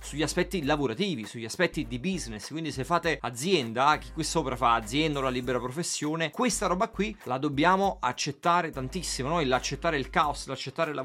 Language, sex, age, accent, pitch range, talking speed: Italian, male, 30-49, native, 130-170 Hz, 180 wpm